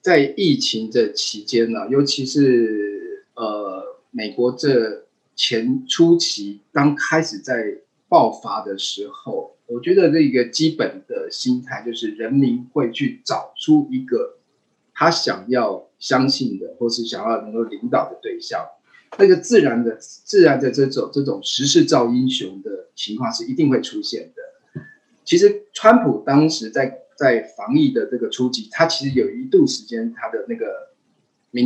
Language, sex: Chinese, male